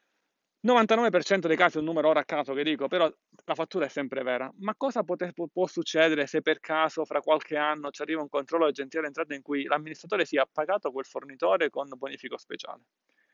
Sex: male